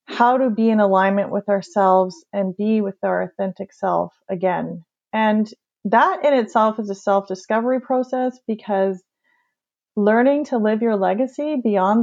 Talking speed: 145 wpm